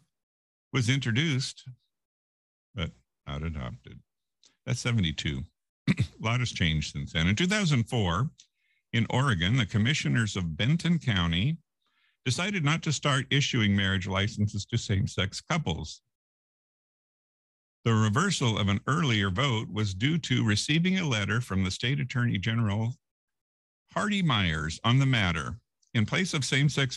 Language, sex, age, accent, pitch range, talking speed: English, male, 50-69, American, 95-130 Hz, 130 wpm